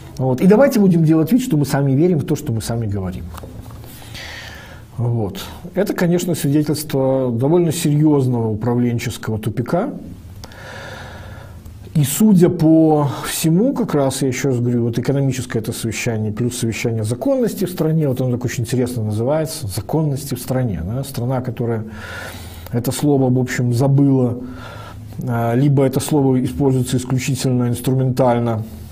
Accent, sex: native, male